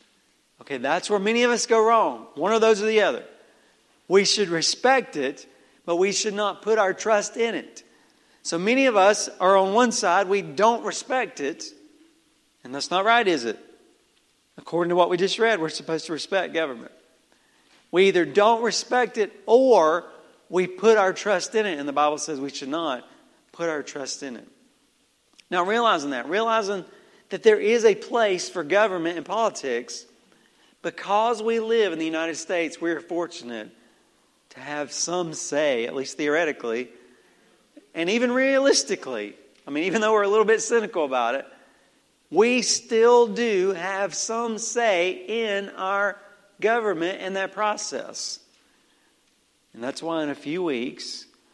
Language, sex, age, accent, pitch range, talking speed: English, male, 50-69, American, 160-225 Hz, 165 wpm